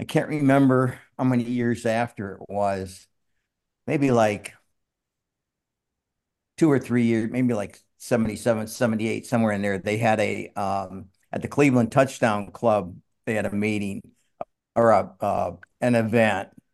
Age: 50-69